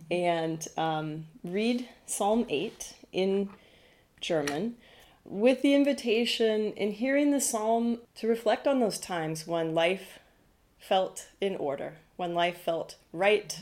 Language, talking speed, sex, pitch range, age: German, 125 wpm, female, 170-235 Hz, 30-49